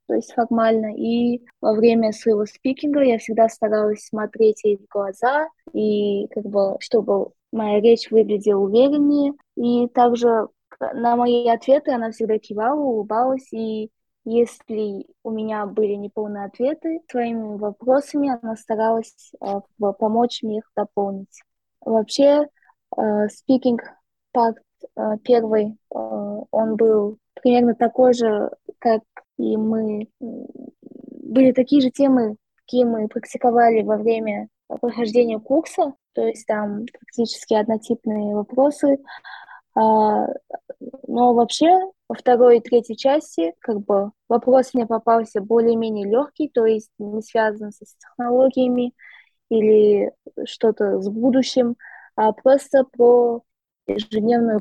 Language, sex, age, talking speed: Russian, female, 20-39, 115 wpm